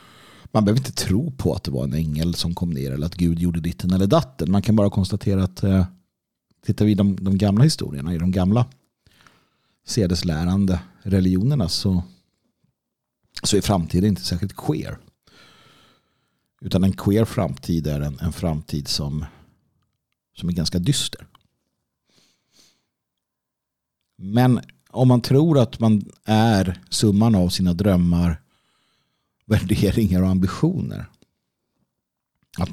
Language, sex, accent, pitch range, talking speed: Swedish, male, native, 85-110 Hz, 130 wpm